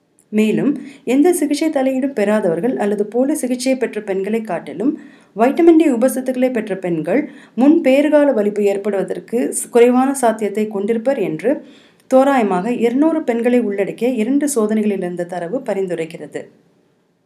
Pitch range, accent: 205-275 Hz, native